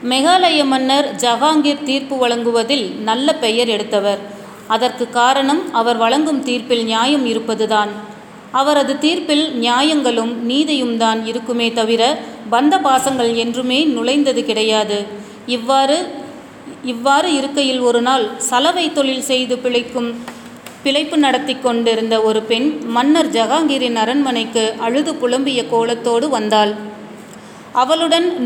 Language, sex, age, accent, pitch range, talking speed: Tamil, female, 30-49, native, 230-280 Hz, 90 wpm